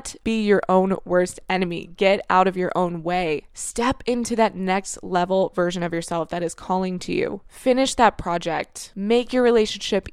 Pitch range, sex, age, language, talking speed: 175-210 Hz, female, 20-39, English, 180 wpm